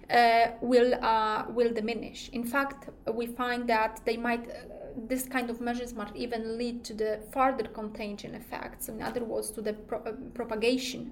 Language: English